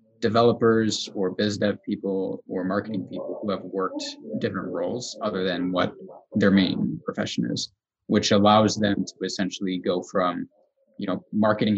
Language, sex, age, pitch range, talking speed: English, male, 20-39, 100-115 Hz, 155 wpm